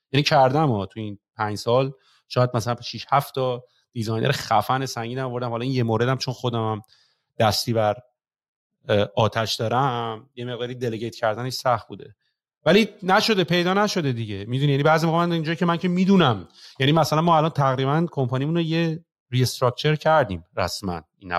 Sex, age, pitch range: male, 30-49, 110-165 Hz